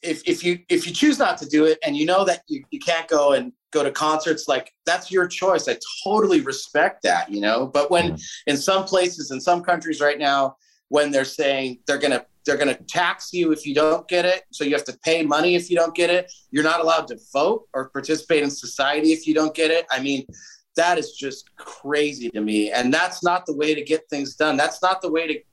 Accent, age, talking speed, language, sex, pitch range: American, 30-49, 245 wpm, English, male, 140-175 Hz